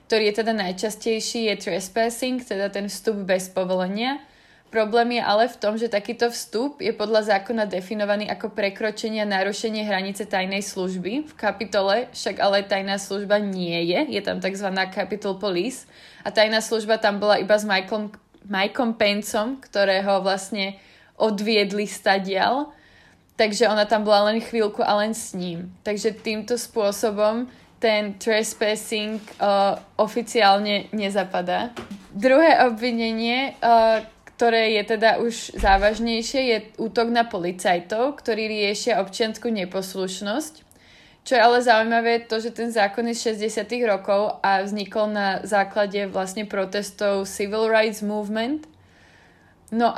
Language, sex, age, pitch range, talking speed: Slovak, female, 20-39, 200-225 Hz, 135 wpm